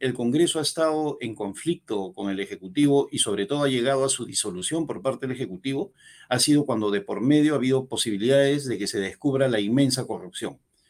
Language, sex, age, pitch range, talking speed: Spanish, male, 50-69, 125-170 Hz, 205 wpm